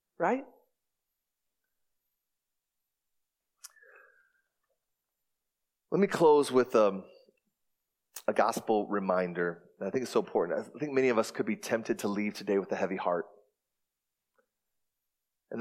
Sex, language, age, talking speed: male, English, 30-49, 120 wpm